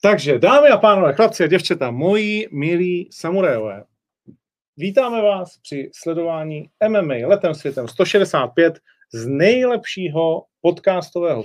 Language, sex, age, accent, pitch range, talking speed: Czech, male, 40-59, native, 135-175 Hz, 110 wpm